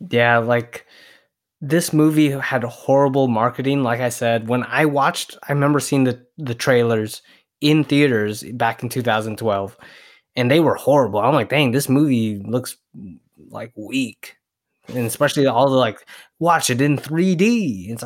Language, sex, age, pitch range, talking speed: English, male, 20-39, 120-150 Hz, 155 wpm